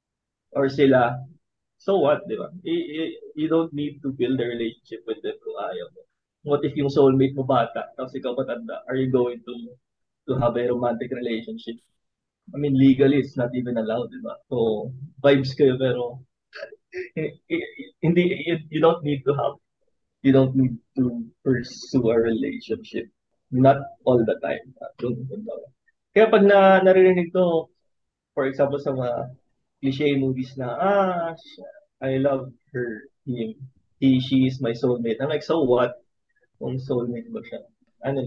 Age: 20-39